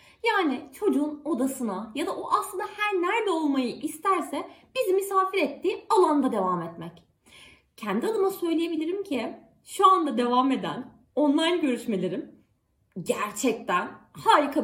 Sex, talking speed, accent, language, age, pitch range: female, 120 wpm, native, Turkish, 30-49, 250-375 Hz